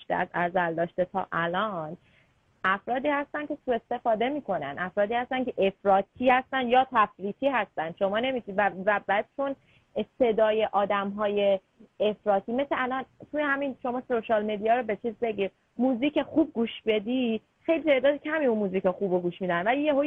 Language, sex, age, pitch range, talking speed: Persian, female, 30-49, 210-290 Hz, 150 wpm